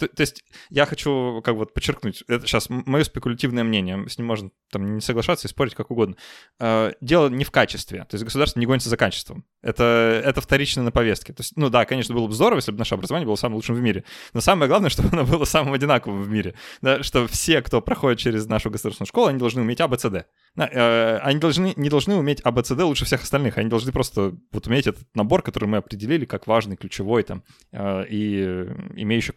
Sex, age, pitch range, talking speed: male, 20-39, 105-135 Hz, 225 wpm